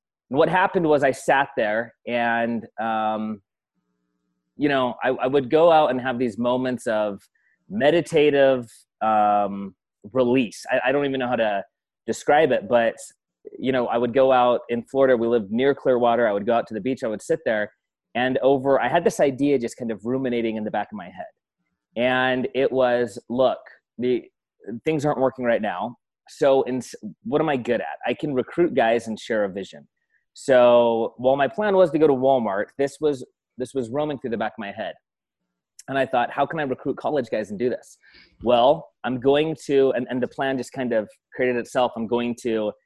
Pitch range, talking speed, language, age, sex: 120-145 Hz, 205 wpm, English, 30-49, male